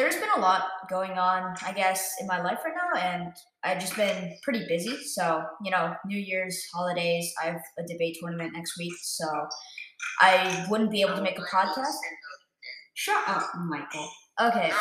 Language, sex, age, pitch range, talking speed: English, female, 20-39, 180-230 Hz, 185 wpm